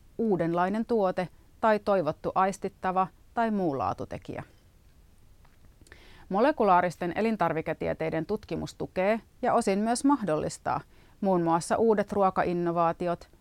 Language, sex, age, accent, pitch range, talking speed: Finnish, female, 30-49, native, 165-205 Hz, 95 wpm